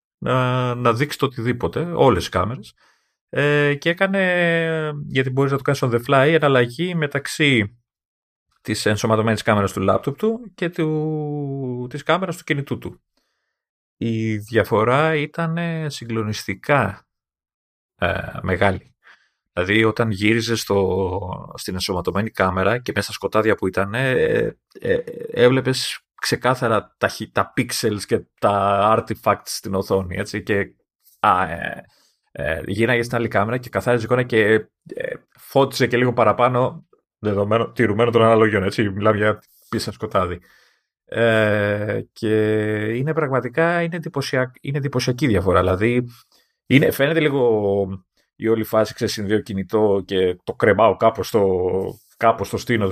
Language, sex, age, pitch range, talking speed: Greek, male, 30-49, 105-140 Hz, 120 wpm